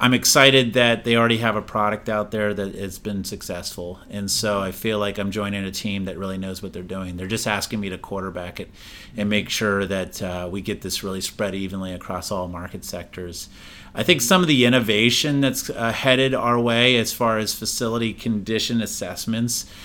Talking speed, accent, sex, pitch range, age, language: 205 wpm, American, male, 100-125 Hz, 30-49, English